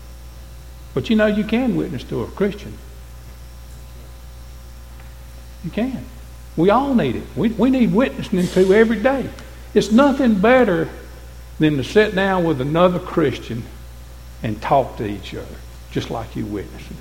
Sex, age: male, 60-79